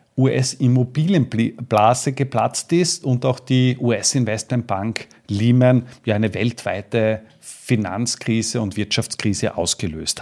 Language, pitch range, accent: German, 120-150 Hz, Austrian